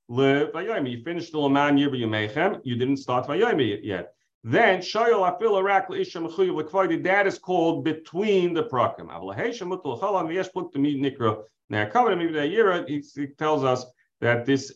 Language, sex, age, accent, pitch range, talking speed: English, male, 40-59, American, 125-170 Hz, 145 wpm